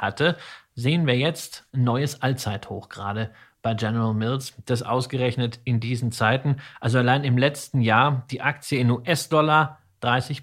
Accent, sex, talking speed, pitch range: German, male, 150 wpm, 120-150 Hz